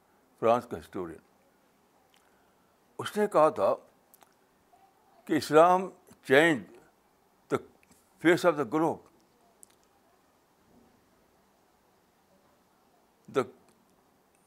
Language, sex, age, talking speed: Urdu, male, 60-79, 65 wpm